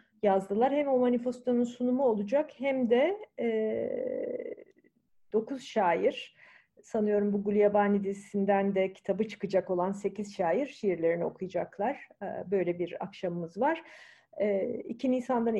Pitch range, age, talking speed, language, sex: 180-230 Hz, 40-59, 120 wpm, Turkish, female